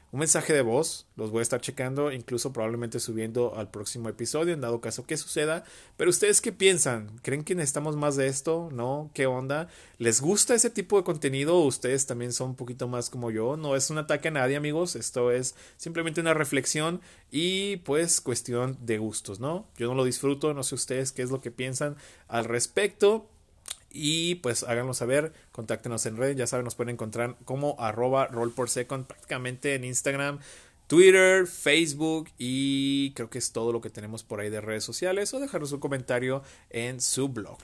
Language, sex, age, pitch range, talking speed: Spanish, male, 30-49, 115-145 Hz, 190 wpm